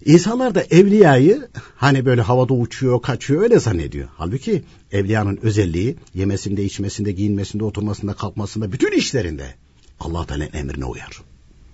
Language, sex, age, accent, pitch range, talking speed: Turkish, male, 60-79, native, 90-145 Hz, 120 wpm